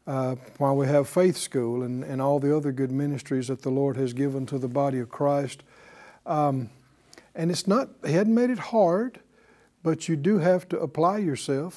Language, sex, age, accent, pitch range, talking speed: English, male, 60-79, American, 135-195 Hz, 200 wpm